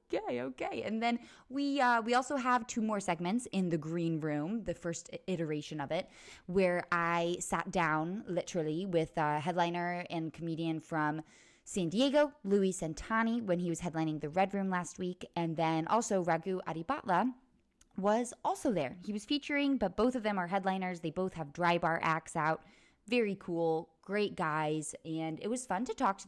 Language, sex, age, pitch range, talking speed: English, female, 20-39, 165-240 Hz, 185 wpm